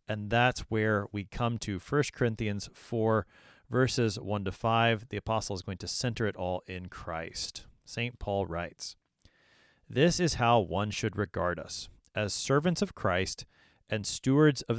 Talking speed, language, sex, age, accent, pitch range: 160 wpm, English, male, 30-49, American, 95-125 Hz